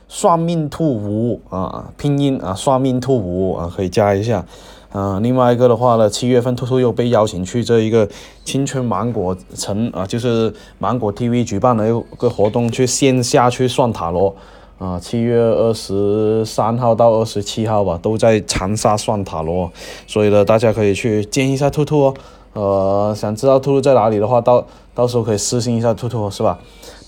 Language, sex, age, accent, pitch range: Chinese, male, 20-39, native, 100-130 Hz